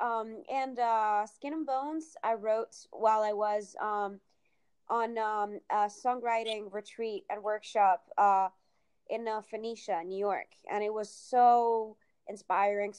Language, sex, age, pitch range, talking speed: English, female, 20-39, 200-240 Hz, 140 wpm